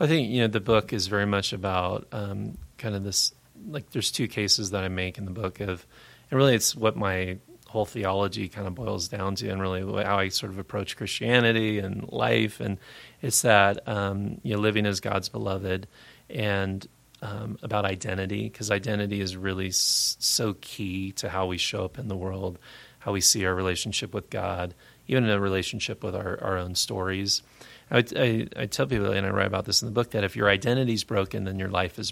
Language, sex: English, male